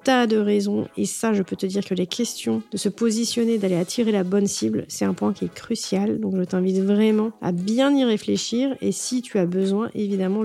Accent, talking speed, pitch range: French, 230 wpm, 195-245 Hz